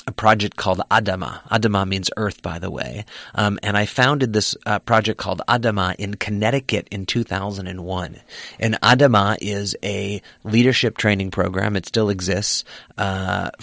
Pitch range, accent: 95-110 Hz, American